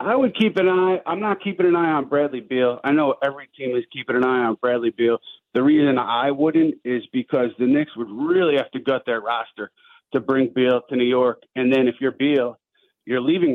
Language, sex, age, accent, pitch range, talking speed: English, male, 30-49, American, 125-155 Hz, 230 wpm